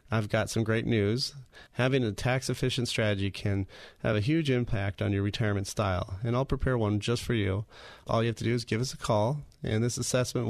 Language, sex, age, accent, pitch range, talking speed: English, male, 30-49, American, 105-130 Hz, 215 wpm